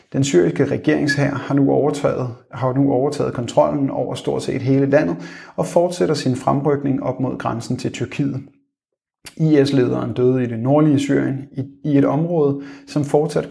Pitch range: 125-145 Hz